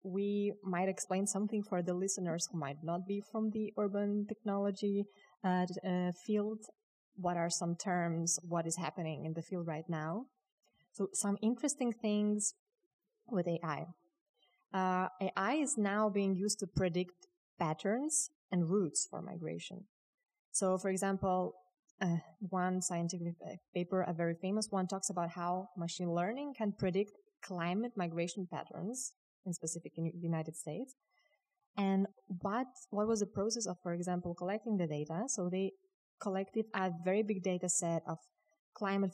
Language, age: English, 20-39